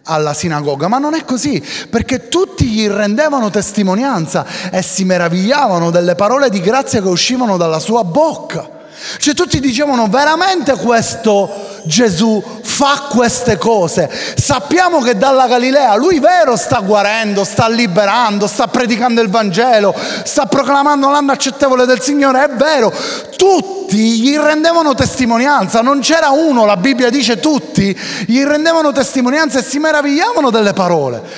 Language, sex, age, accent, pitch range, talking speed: Italian, male, 30-49, native, 200-285 Hz, 140 wpm